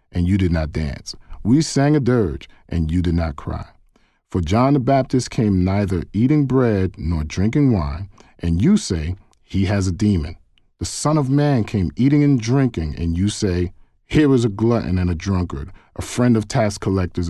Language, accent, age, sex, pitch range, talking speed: English, American, 40-59, male, 85-125 Hz, 190 wpm